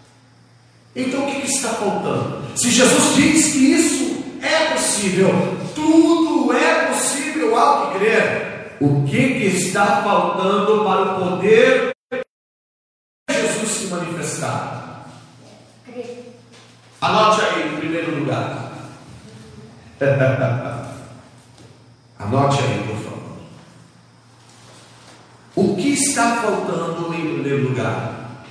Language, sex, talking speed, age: Portuguese, male, 95 wpm, 50-69